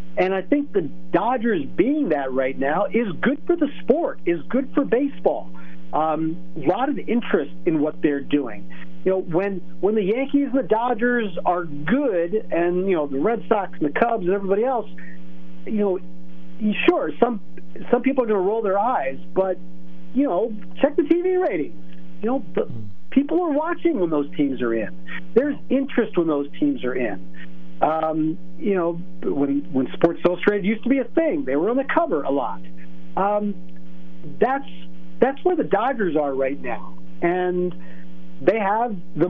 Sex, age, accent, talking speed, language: male, 50-69, American, 185 wpm, English